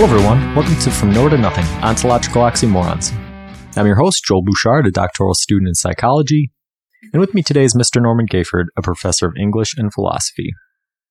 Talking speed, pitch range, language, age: 185 wpm, 95-130 Hz, English, 30-49